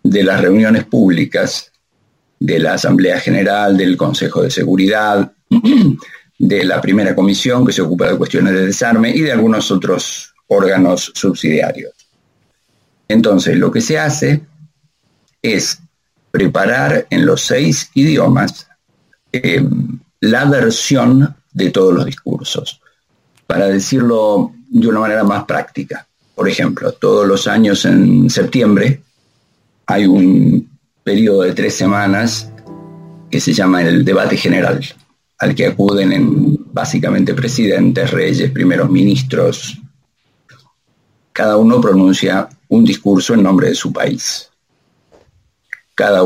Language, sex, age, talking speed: Spanish, male, 50-69, 120 wpm